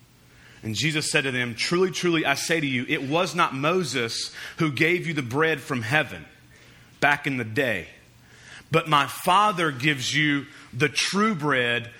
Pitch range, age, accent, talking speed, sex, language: 120-165 Hz, 30-49, American, 170 wpm, male, English